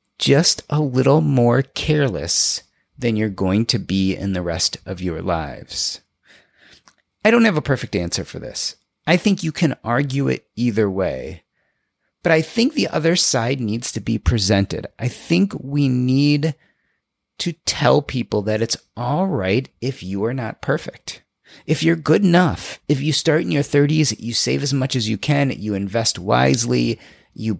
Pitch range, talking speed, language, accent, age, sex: 105-150 Hz, 170 wpm, English, American, 30-49, male